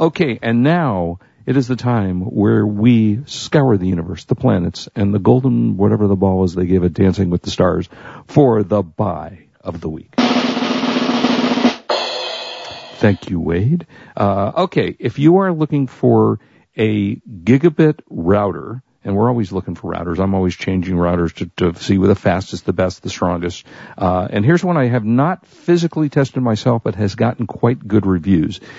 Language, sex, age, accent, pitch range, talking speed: English, male, 50-69, American, 95-130 Hz, 150 wpm